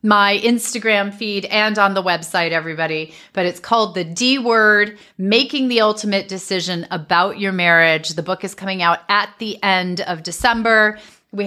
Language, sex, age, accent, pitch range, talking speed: English, female, 30-49, American, 170-205 Hz, 165 wpm